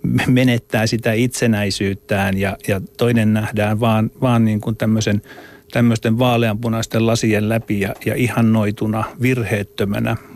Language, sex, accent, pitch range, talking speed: Finnish, male, native, 110-135 Hz, 115 wpm